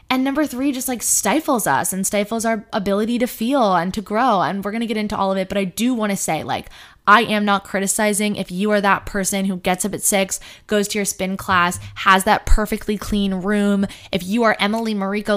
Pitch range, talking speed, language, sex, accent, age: 190-240 Hz, 240 wpm, English, female, American, 20-39